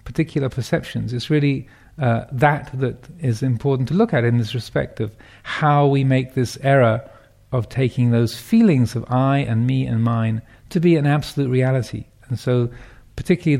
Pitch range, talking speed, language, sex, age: 115-140 Hz, 170 wpm, English, male, 50-69